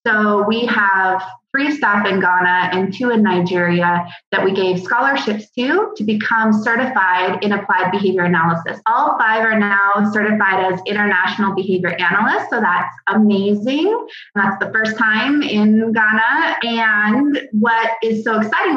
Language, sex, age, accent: English, female, 20-39, American